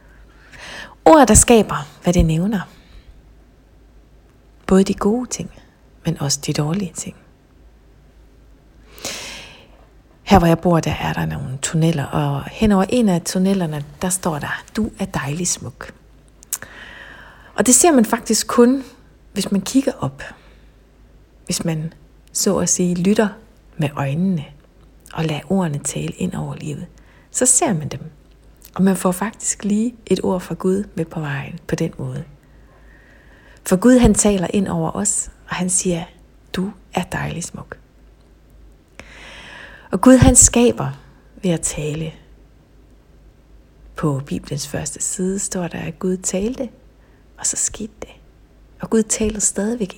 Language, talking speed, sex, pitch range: Danish, 145 wpm, female, 160-205 Hz